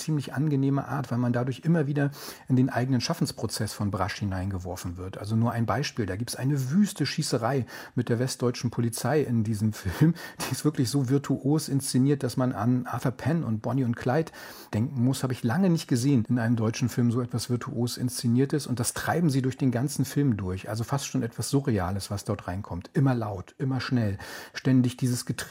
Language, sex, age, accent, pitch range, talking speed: English, male, 40-59, German, 120-140 Hz, 200 wpm